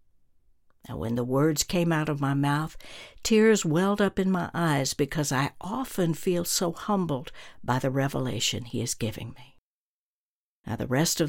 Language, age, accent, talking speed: English, 60-79, American, 170 wpm